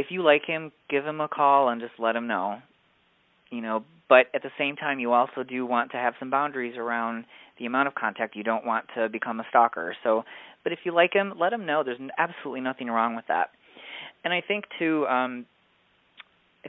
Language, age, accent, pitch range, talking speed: English, 30-49, American, 115-150 Hz, 220 wpm